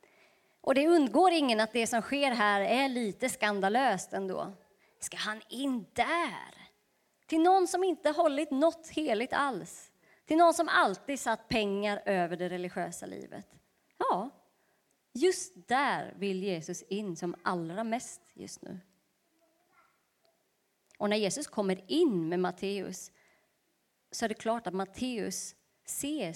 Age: 30-49